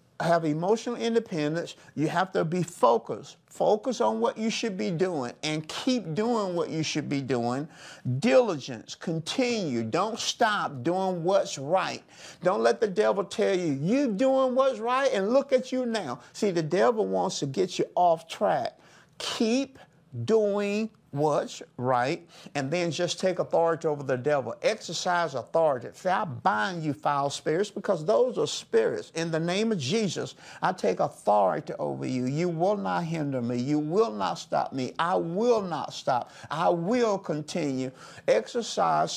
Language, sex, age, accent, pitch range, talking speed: English, male, 50-69, American, 150-220 Hz, 165 wpm